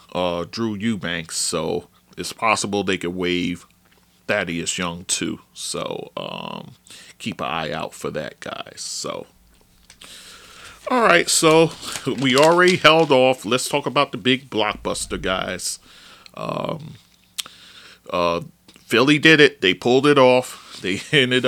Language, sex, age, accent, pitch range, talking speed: English, male, 40-59, American, 100-125 Hz, 130 wpm